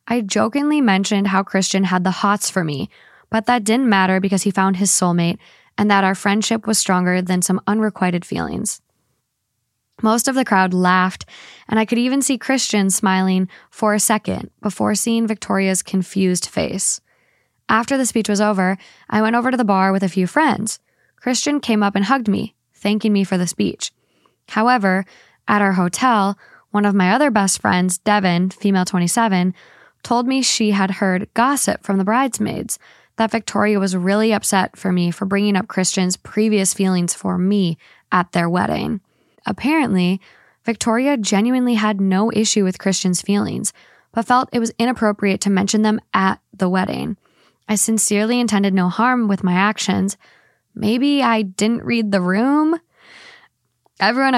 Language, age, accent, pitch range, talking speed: English, 10-29, American, 190-225 Hz, 165 wpm